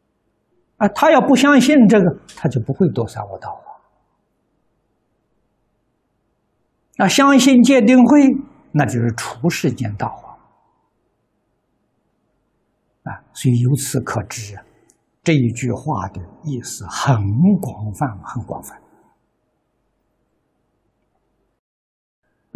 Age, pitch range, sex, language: 60-79, 120-195 Hz, male, Chinese